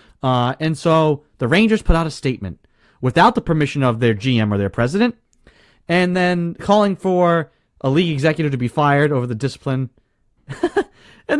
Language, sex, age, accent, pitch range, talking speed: English, male, 30-49, American, 130-190 Hz, 170 wpm